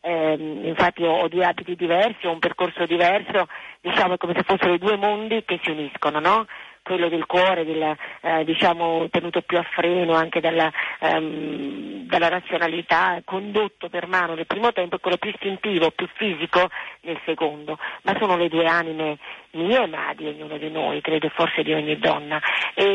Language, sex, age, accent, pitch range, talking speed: Italian, female, 40-59, native, 165-195 Hz, 180 wpm